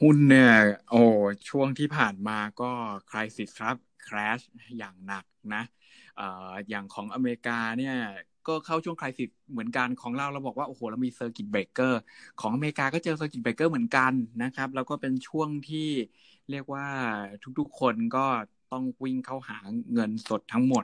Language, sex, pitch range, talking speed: English, male, 105-135 Hz, 60 wpm